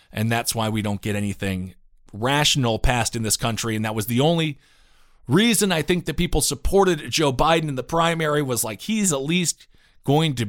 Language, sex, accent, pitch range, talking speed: English, male, American, 115-160 Hz, 200 wpm